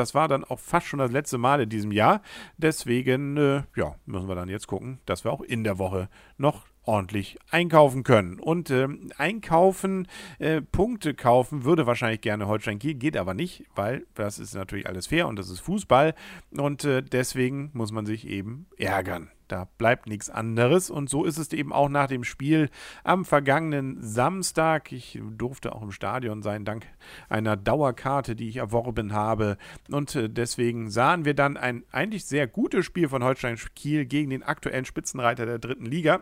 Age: 50-69